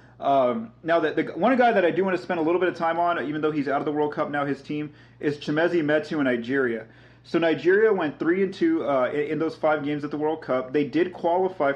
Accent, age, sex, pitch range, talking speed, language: American, 30-49, male, 135-165 Hz, 270 wpm, English